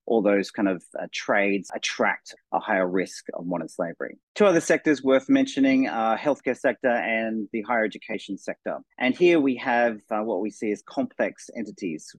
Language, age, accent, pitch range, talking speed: English, 30-49, Australian, 100-125 Hz, 185 wpm